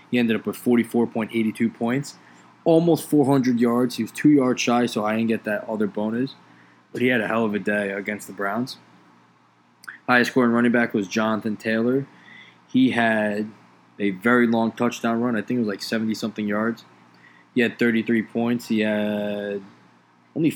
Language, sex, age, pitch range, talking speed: English, male, 20-39, 100-120 Hz, 175 wpm